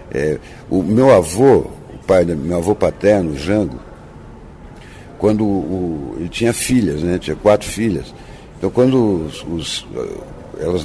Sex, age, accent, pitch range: male, 60-79, Brazilian, 95-125 Hz